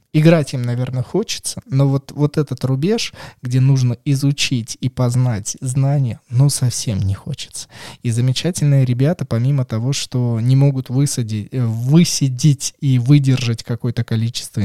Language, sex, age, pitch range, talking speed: Russian, male, 20-39, 115-140 Hz, 130 wpm